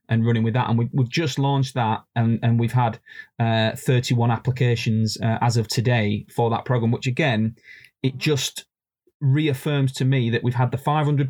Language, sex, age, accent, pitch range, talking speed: English, male, 20-39, British, 115-140 Hz, 190 wpm